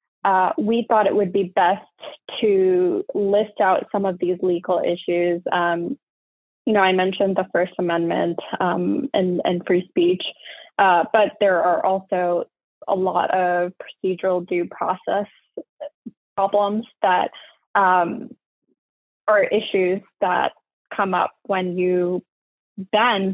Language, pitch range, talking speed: English, 185-220 Hz, 130 wpm